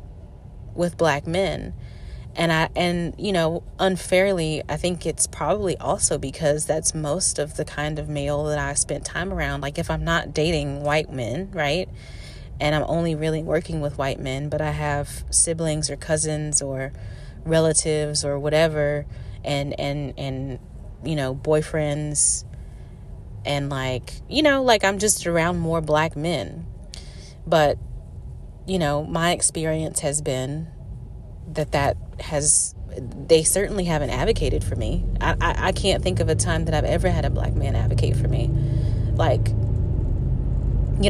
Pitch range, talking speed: 110-160 Hz, 155 wpm